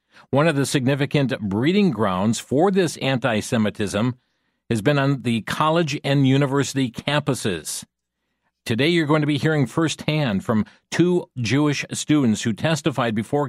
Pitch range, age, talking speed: 115-150 Hz, 50-69, 140 wpm